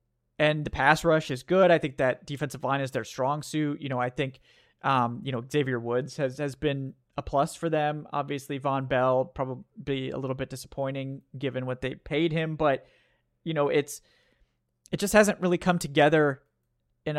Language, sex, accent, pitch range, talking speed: English, male, American, 135-160 Hz, 190 wpm